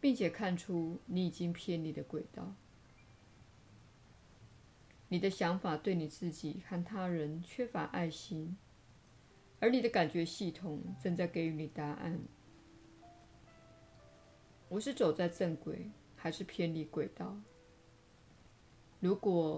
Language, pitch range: Chinese, 150-185 Hz